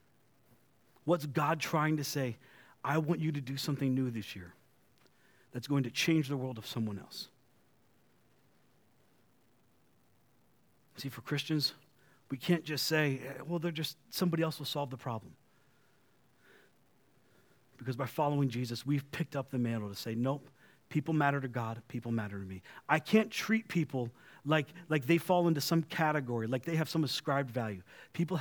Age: 40-59